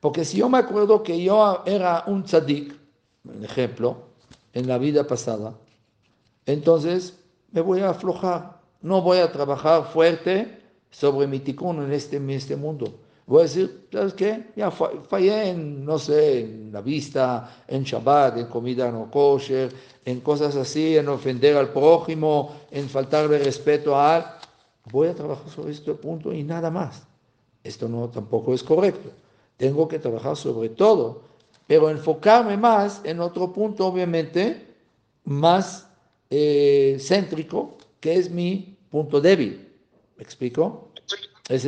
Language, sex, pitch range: Spanish, male, 130-175 Hz